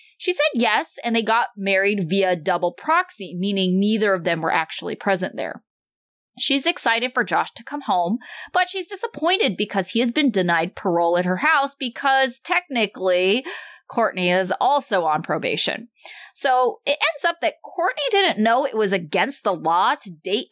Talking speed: 175 wpm